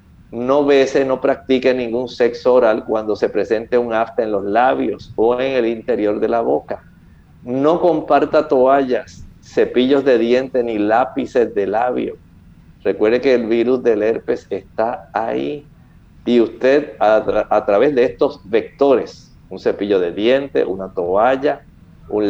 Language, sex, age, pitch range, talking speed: English, male, 50-69, 115-150 Hz, 150 wpm